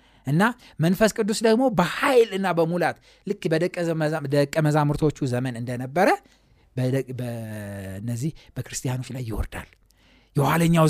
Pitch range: 140-225 Hz